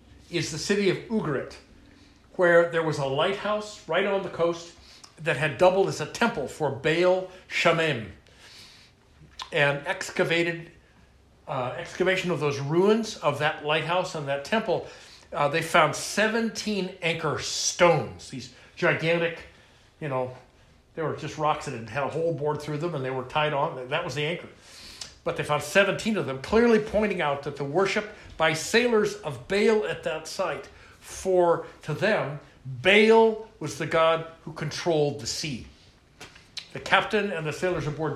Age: 60-79